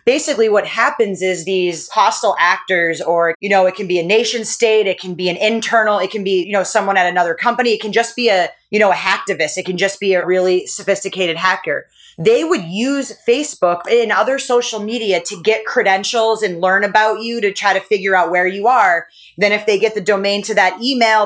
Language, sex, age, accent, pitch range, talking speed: English, female, 30-49, American, 185-220 Hz, 225 wpm